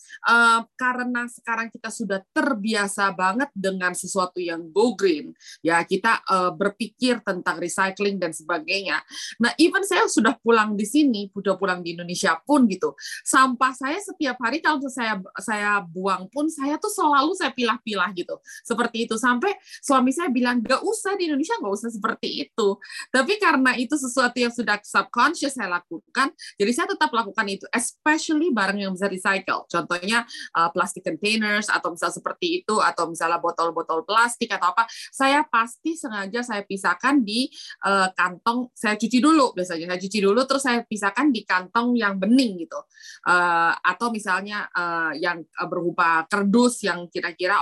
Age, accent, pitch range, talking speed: 20-39, native, 185-260 Hz, 160 wpm